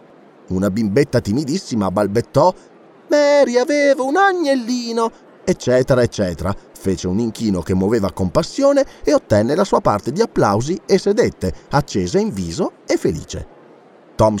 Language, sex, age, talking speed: Italian, male, 30-49, 130 wpm